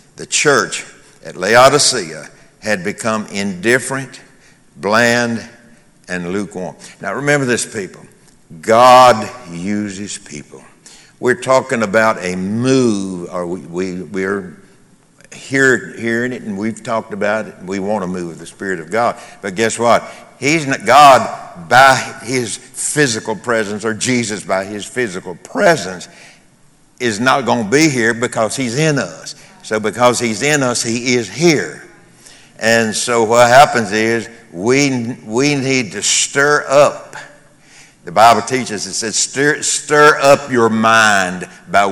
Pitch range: 105-130 Hz